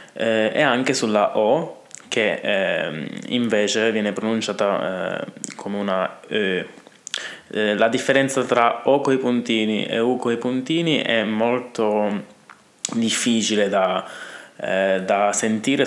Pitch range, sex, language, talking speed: 100-115 Hz, male, Italian, 115 wpm